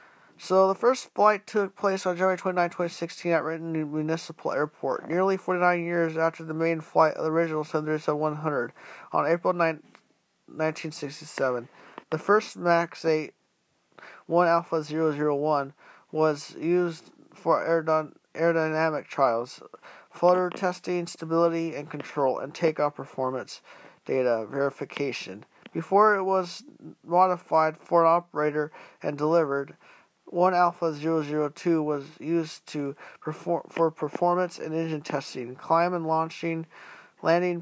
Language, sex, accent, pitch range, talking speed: English, male, American, 155-175 Hz, 115 wpm